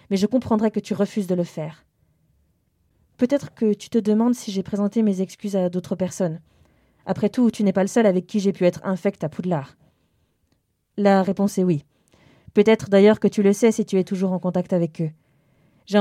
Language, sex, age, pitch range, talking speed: French, female, 20-39, 180-205 Hz, 210 wpm